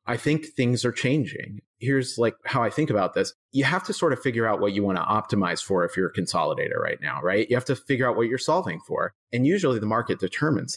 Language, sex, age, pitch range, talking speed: English, male, 30-49, 105-135 Hz, 250 wpm